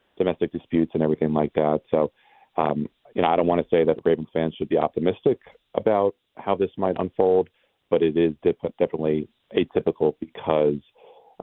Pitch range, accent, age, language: 75-85 Hz, American, 40-59, English